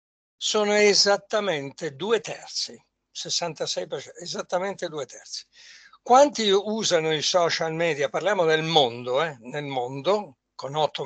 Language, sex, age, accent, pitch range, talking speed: Italian, male, 60-79, native, 155-210 Hz, 115 wpm